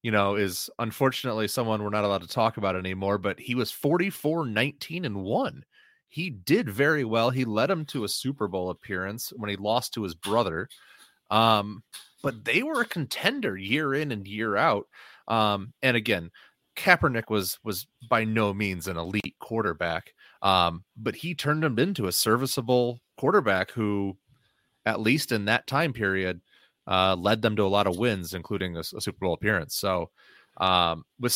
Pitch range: 100-130 Hz